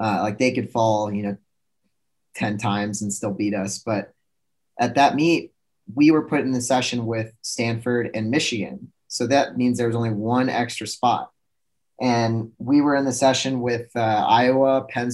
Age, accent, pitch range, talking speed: 20-39, American, 110-125 Hz, 180 wpm